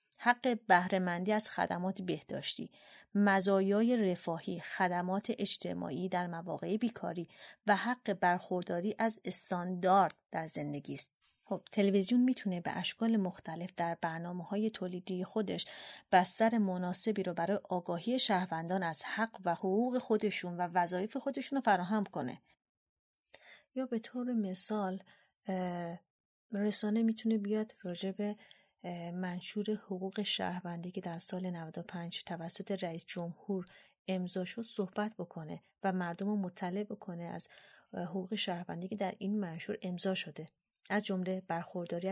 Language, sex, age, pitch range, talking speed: Persian, female, 30-49, 175-205 Hz, 120 wpm